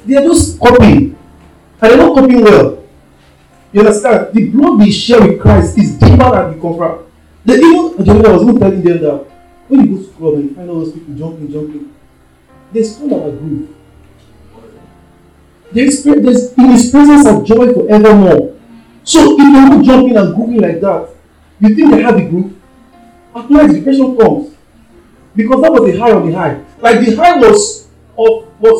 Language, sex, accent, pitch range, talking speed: English, male, Nigerian, 200-280 Hz, 190 wpm